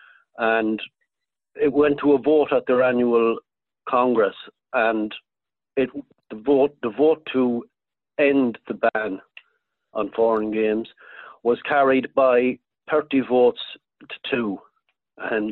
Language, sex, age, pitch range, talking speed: English, male, 60-79, 110-145 Hz, 120 wpm